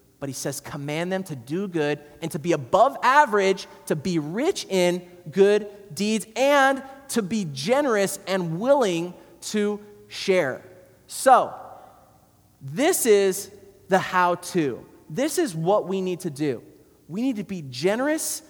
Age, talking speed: 30-49, 145 wpm